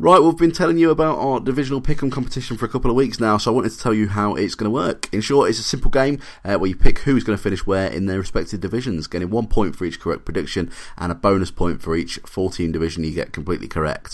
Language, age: English, 30-49